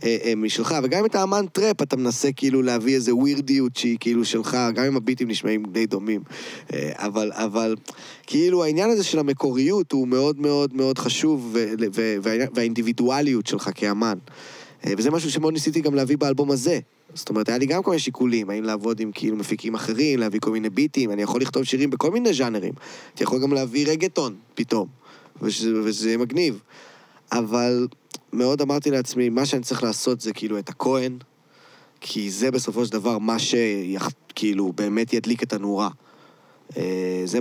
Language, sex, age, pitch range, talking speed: Hebrew, male, 20-39, 110-135 Hz, 170 wpm